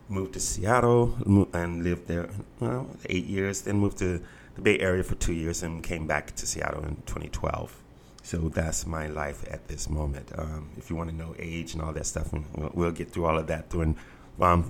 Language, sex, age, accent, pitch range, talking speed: English, male, 30-49, American, 85-105 Hz, 205 wpm